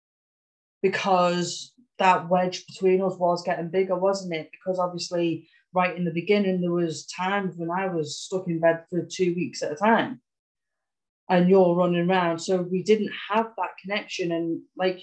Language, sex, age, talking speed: English, female, 30-49, 170 wpm